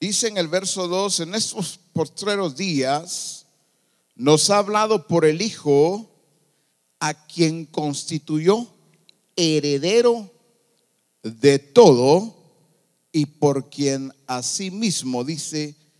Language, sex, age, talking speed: English, male, 50-69, 105 wpm